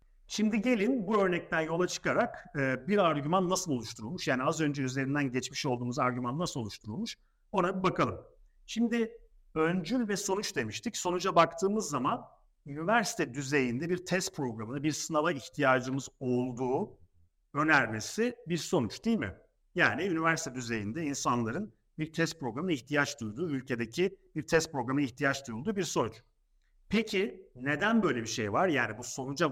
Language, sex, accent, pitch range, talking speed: Turkish, male, native, 125-185 Hz, 140 wpm